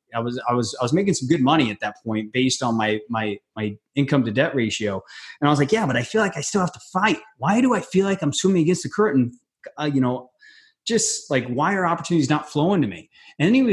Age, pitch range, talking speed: 30-49, 115-150 Hz, 260 wpm